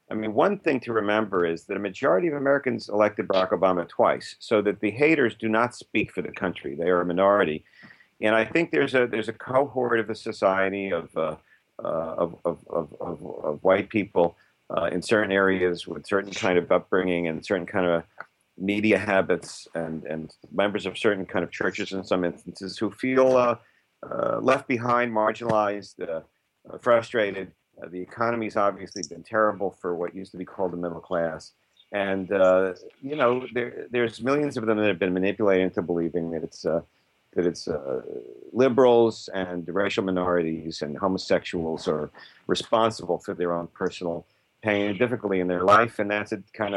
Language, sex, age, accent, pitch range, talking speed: English, male, 50-69, American, 90-115 Hz, 185 wpm